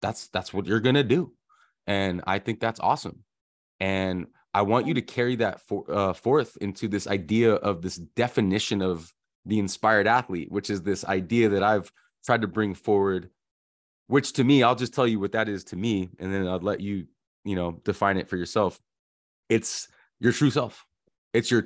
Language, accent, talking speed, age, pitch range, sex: English, American, 195 wpm, 20-39, 95-115 Hz, male